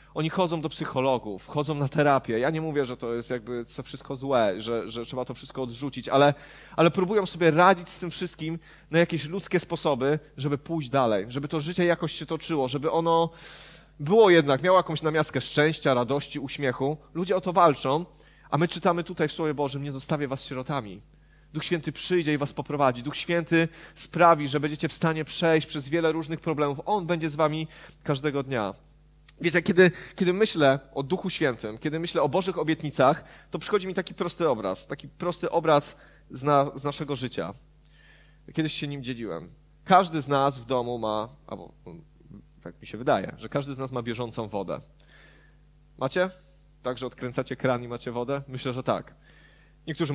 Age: 30-49